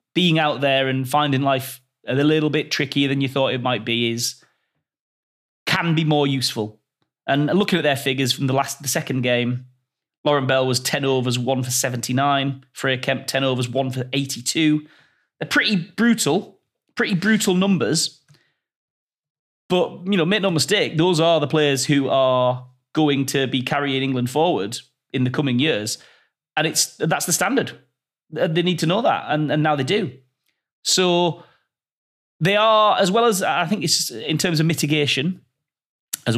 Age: 30-49